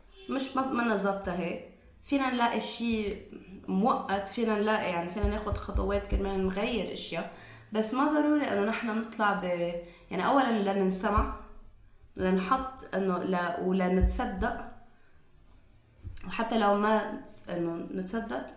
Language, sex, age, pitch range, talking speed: Arabic, female, 20-39, 175-220 Hz, 120 wpm